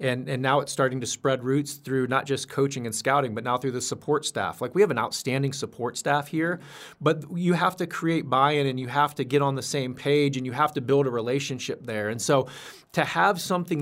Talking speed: 245 wpm